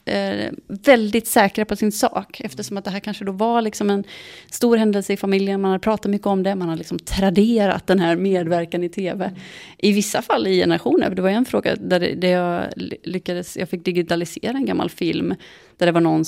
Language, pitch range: English, 175-220 Hz